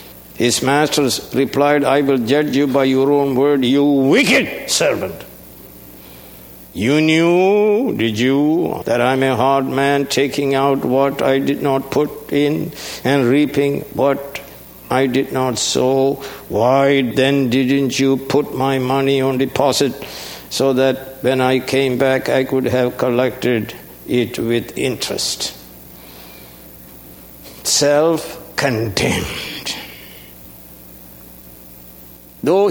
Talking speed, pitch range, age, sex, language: 115 wpm, 120-155 Hz, 60-79, male, English